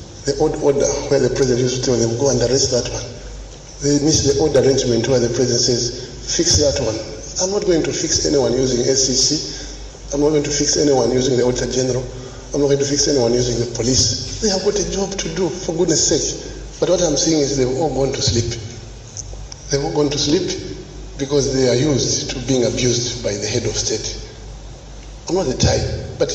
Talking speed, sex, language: 220 wpm, male, English